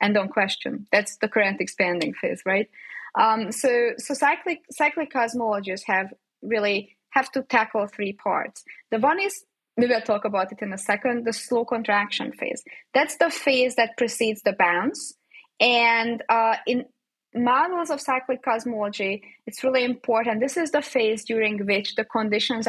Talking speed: 165 wpm